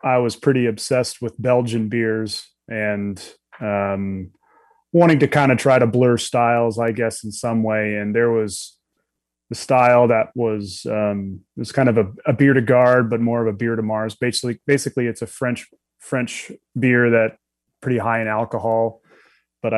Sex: male